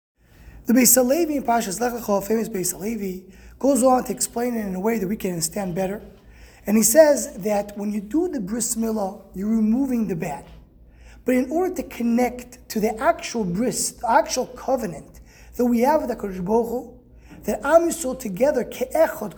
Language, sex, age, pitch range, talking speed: English, male, 20-39, 200-255 Hz, 185 wpm